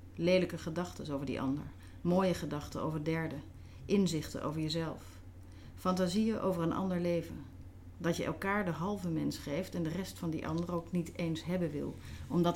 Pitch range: 135-180 Hz